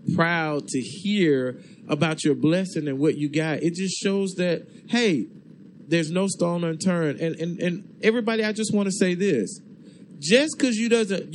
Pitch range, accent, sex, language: 180-235 Hz, American, male, English